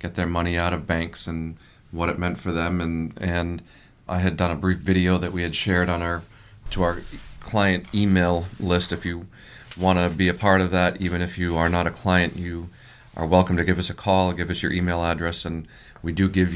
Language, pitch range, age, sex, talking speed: English, 85-100 Hz, 40-59, male, 230 wpm